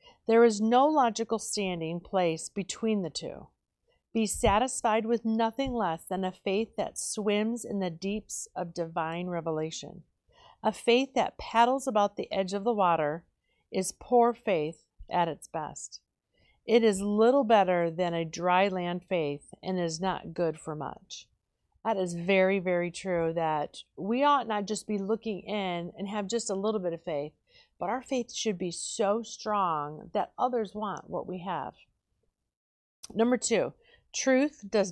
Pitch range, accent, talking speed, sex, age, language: 180-225 Hz, American, 160 wpm, female, 40-59, English